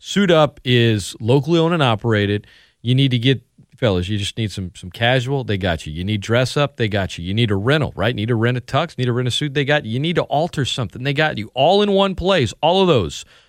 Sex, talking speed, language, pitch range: male, 270 wpm, English, 105-140 Hz